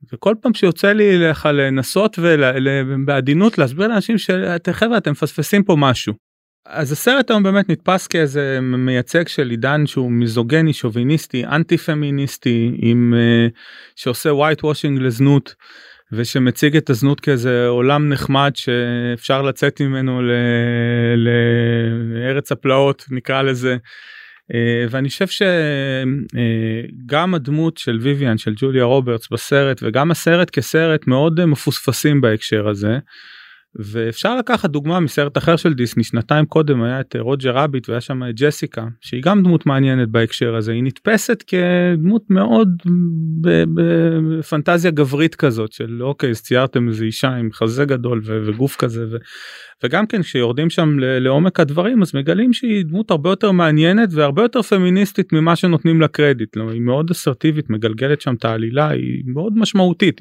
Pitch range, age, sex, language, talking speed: 125-165 Hz, 30-49, male, Hebrew, 140 wpm